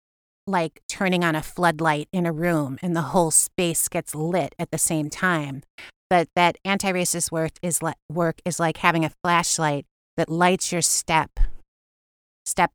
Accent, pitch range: American, 160-195 Hz